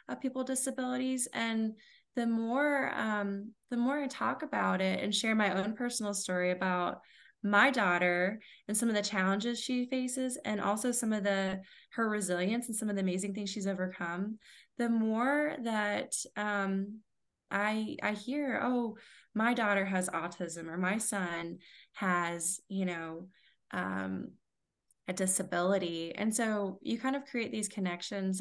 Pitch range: 185-225 Hz